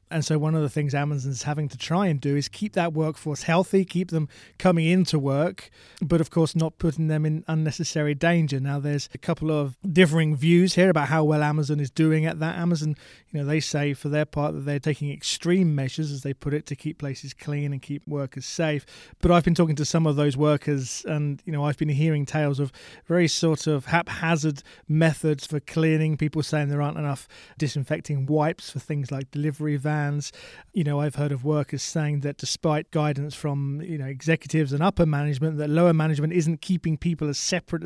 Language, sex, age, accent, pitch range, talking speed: English, male, 20-39, British, 140-160 Hz, 210 wpm